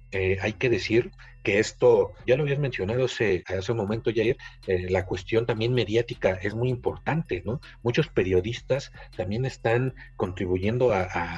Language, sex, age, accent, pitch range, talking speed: Spanish, male, 40-59, Mexican, 95-120 Hz, 165 wpm